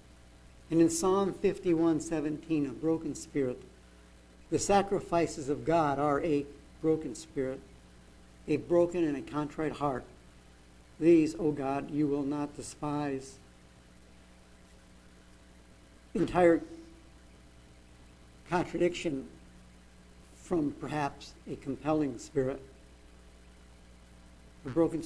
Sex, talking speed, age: male, 90 wpm, 60-79